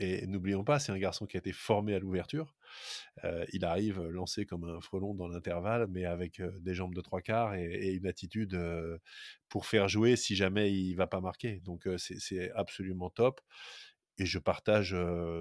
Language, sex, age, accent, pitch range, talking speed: French, male, 30-49, French, 95-110 Hz, 210 wpm